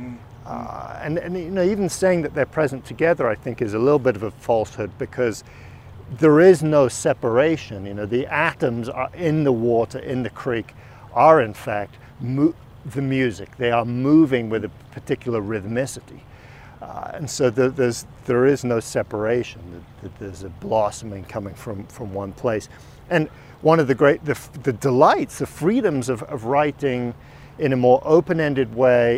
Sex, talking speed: male, 175 wpm